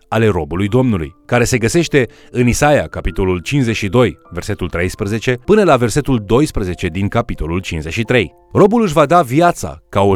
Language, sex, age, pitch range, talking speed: Romanian, male, 30-49, 95-145 Hz, 155 wpm